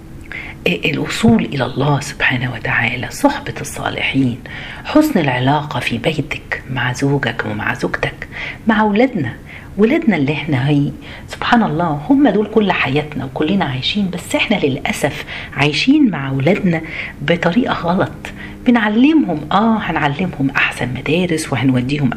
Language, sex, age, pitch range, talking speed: Arabic, female, 40-59, 140-215 Hz, 115 wpm